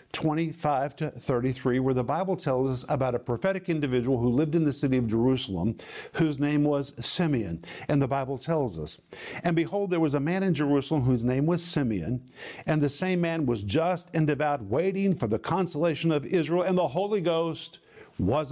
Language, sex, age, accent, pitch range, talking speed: English, male, 50-69, American, 135-170 Hz, 190 wpm